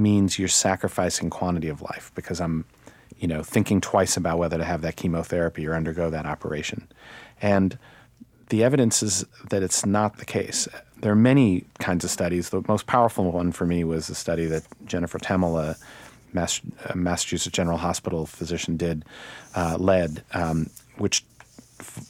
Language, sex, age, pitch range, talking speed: English, male, 40-59, 85-105 Hz, 165 wpm